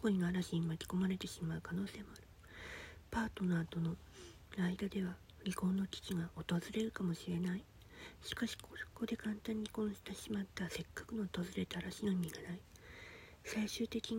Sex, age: female, 40-59